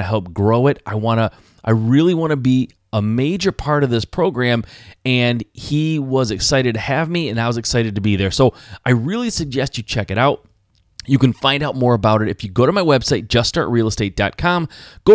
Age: 30-49